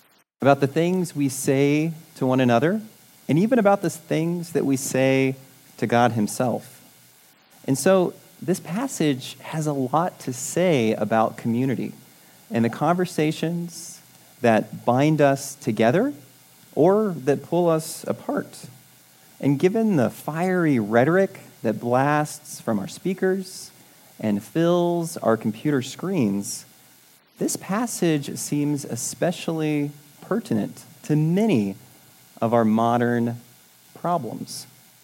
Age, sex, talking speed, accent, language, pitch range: 30-49, male, 115 wpm, American, English, 125-175 Hz